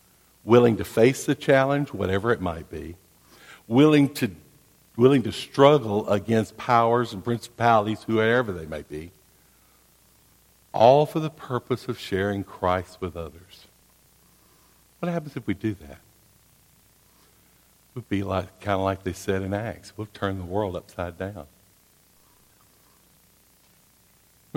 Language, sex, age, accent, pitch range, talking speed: English, male, 60-79, American, 95-120 Hz, 130 wpm